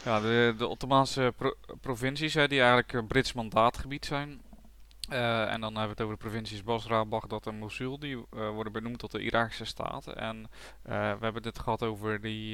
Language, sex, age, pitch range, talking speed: Dutch, male, 20-39, 105-115 Hz, 200 wpm